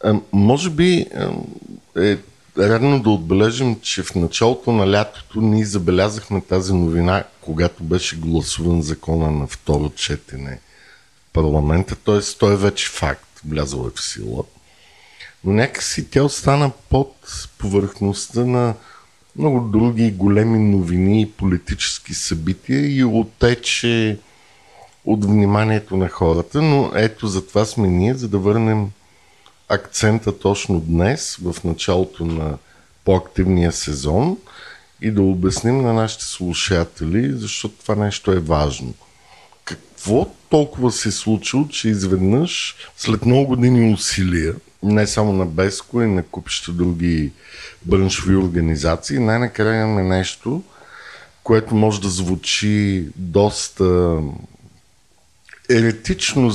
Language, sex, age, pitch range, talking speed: Bulgarian, male, 50-69, 90-110 Hz, 120 wpm